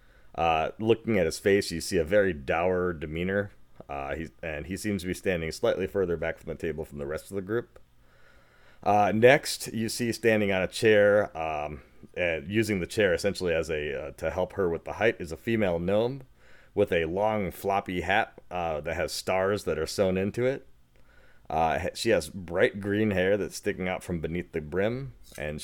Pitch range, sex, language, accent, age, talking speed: 80-105 Hz, male, English, American, 30-49, 200 wpm